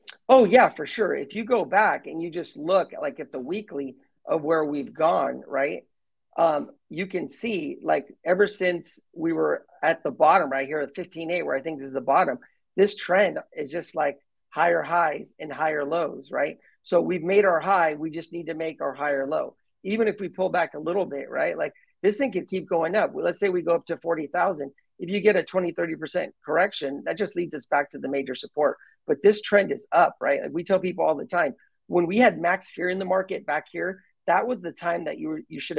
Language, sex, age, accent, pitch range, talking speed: English, male, 40-59, American, 155-190 Hz, 235 wpm